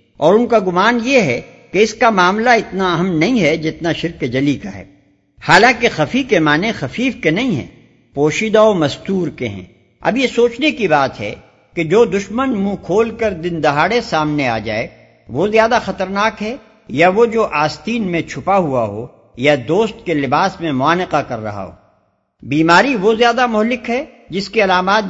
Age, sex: 60-79, male